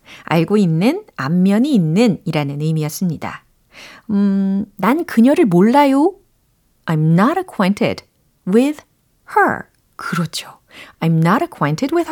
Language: Korean